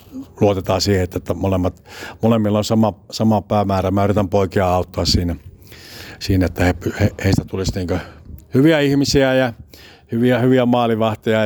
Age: 60-79